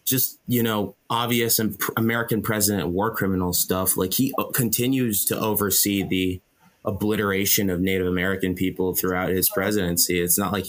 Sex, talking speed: male, 150 wpm